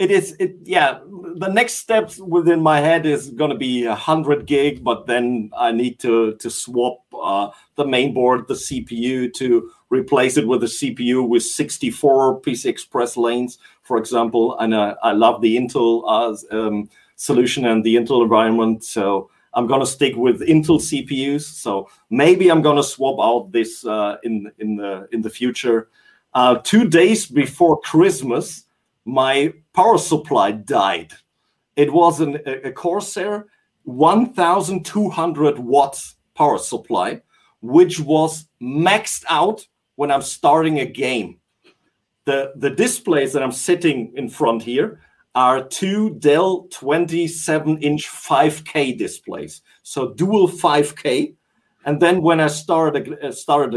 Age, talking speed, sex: 40-59, 145 wpm, male